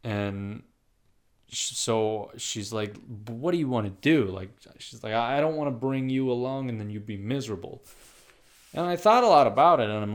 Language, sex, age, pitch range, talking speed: English, male, 20-39, 100-130 Hz, 200 wpm